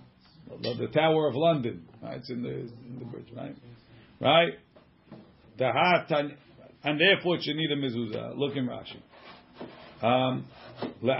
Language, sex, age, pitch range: English, male, 50-69, 130-170 Hz